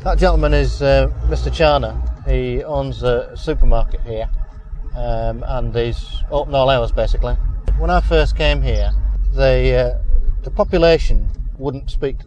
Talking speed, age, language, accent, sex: 145 wpm, 40-59, English, British, male